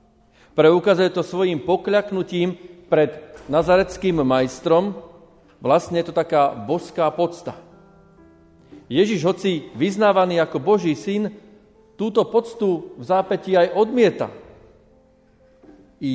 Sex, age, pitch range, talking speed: male, 40-59, 145-190 Hz, 95 wpm